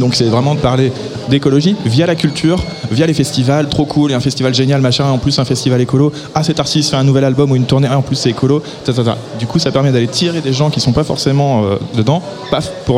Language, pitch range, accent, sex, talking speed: French, 120-150 Hz, French, male, 255 wpm